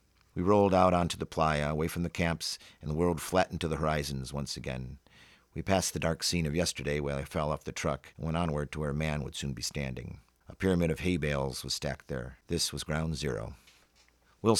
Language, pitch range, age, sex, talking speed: English, 75-95 Hz, 50-69, male, 230 wpm